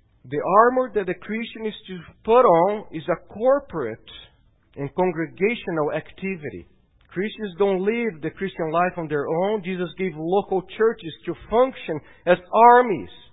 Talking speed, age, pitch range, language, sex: 145 wpm, 50-69, 165-220 Hz, English, male